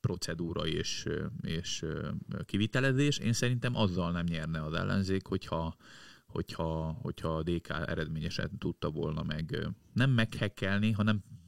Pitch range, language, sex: 85-115 Hz, Hungarian, male